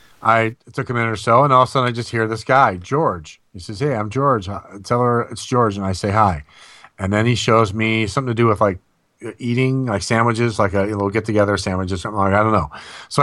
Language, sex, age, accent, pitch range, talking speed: English, male, 40-59, American, 105-130 Hz, 255 wpm